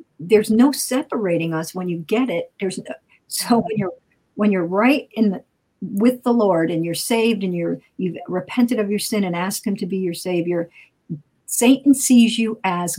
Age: 50-69